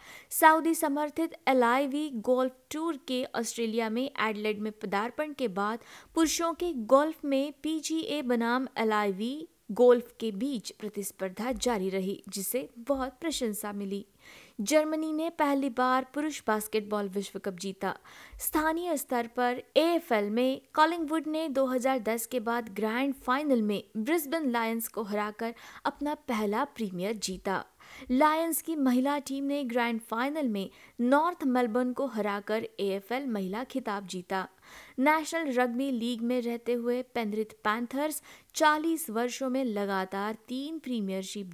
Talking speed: 125 wpm